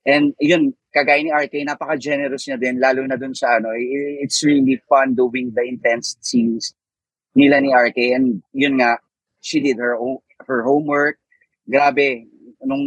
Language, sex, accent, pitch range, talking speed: English, male, Filipino, 115-145 Hz, 160 wpm